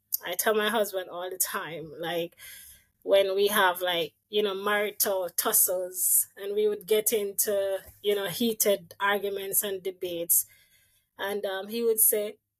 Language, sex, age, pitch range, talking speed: English, female, 20-39, 195-245 Hz, 150 wpm